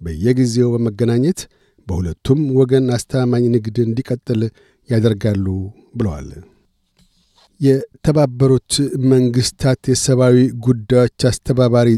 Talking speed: 70 wpm